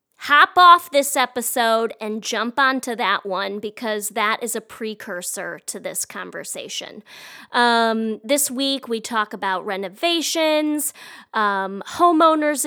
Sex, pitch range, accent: female, 215-275 Hz, American